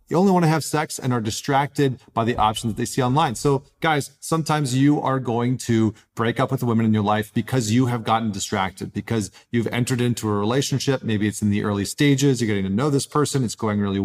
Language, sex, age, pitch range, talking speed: English, male, 40-59, 110-135 Hz, 245 wpm